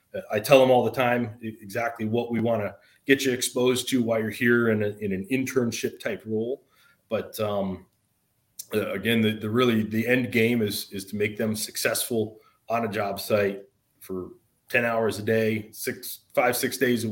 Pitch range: 100-120 Hz